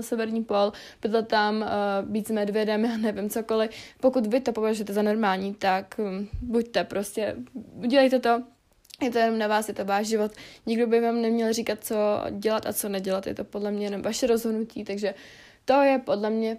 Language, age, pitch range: Czech, 20-39, 210-230 Hz